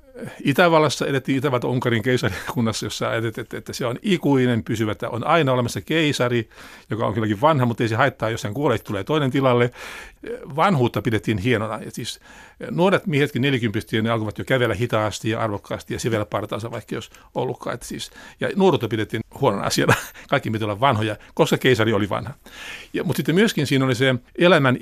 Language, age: Finnish, 60-79